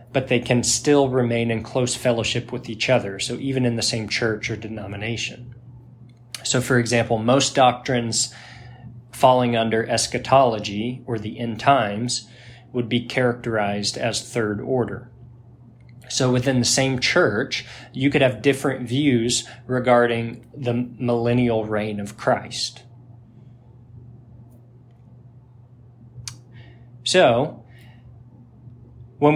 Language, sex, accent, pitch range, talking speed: English, male, American, 120-125 Hz, 110 wpm